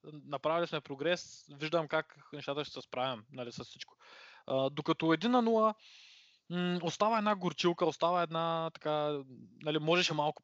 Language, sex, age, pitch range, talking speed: Bulgarian, male, 20-39, 140-175 Hz, 140 wpm